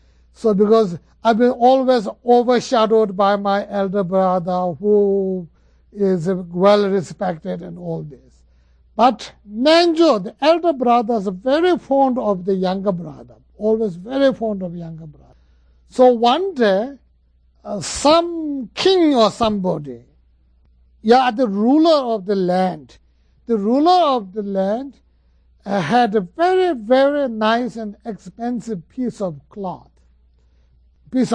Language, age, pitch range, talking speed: English, 60-79, 175-245 Hz, 125 wpm